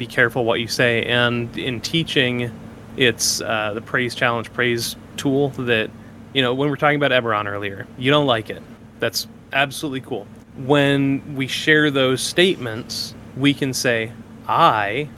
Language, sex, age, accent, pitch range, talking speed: English, male, 20-39, American, 115-145 Hz, 160 wpm